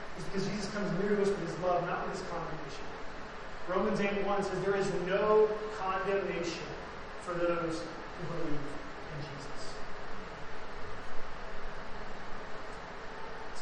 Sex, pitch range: male, 175-205 Hz